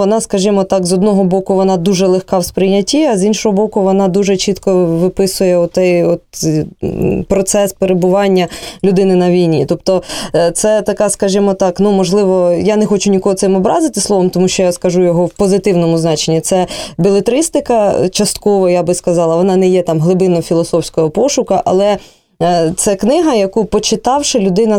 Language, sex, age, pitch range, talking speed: Russian, female, 20-39, 175-205 Hz, 160 wpm